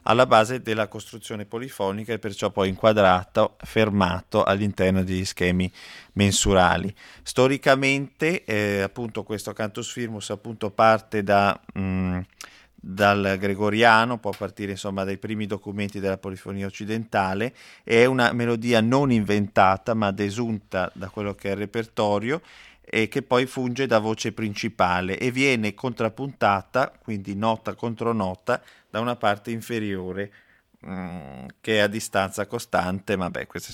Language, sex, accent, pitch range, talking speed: Italian, male, native, 100-120 Hz, 135 wpm